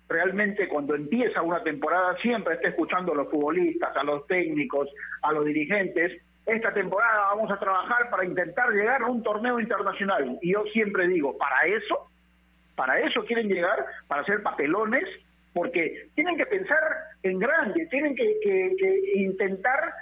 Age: 50-69